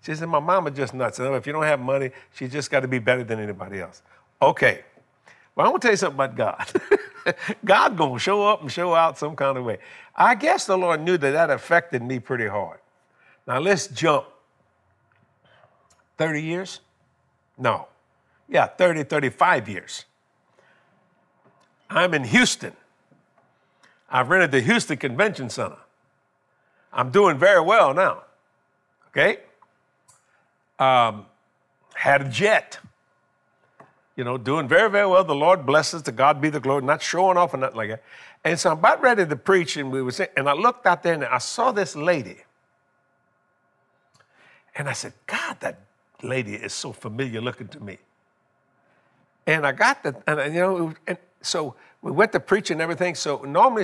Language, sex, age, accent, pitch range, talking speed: English, male, 60-79, American, 135-180 Hz, 170 wpm